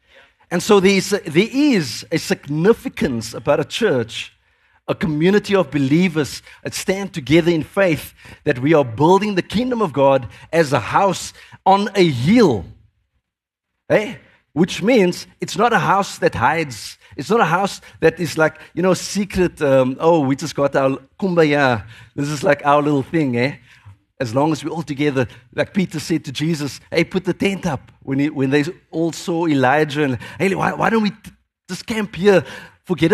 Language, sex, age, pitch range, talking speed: English, male, 50-69, 140-190 Hz, 175 wpm